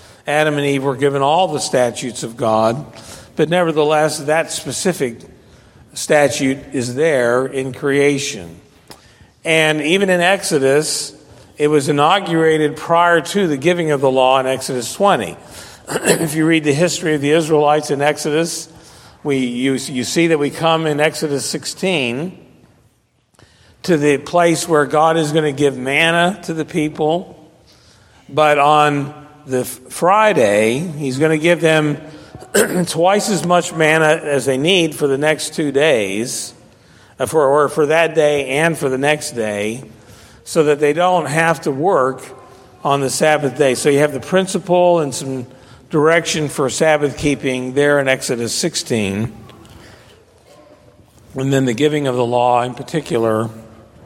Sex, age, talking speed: male, 50-69, 150 wpm